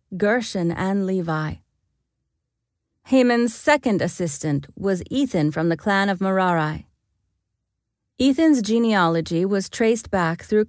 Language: English